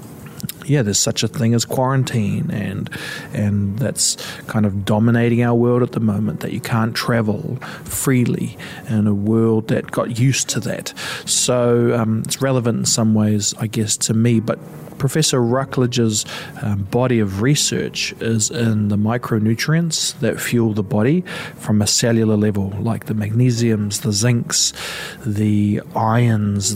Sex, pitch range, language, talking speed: male, 110-130 Hz, English, 150 wpm